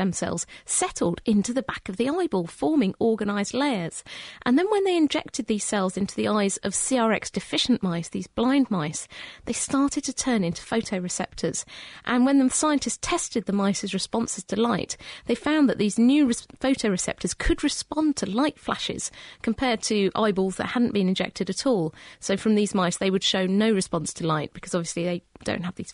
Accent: British